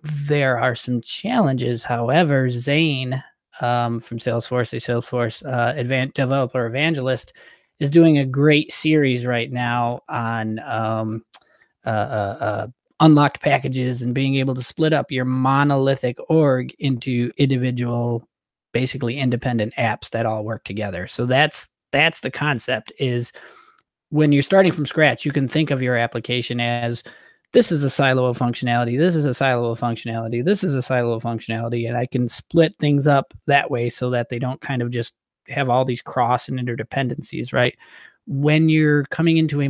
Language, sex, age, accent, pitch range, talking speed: English, male, 20-39, American, 120-140 Hz, 165 wpm